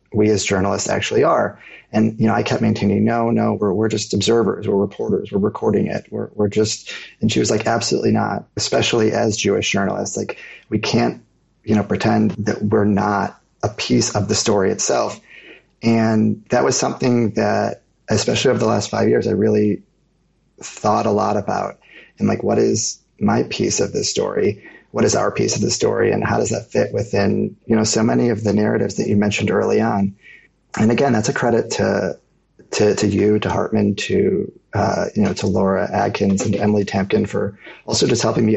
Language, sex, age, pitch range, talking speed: English, male, 30-49, 100-110 Hz, 200 wpm